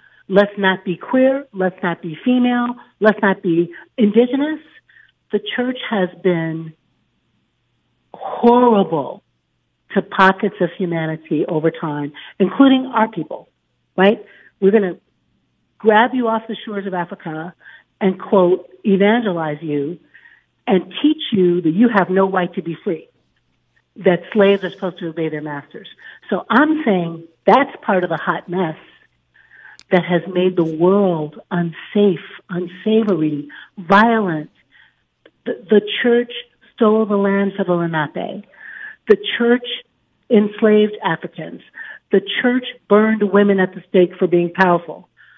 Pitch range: 170-215 Hz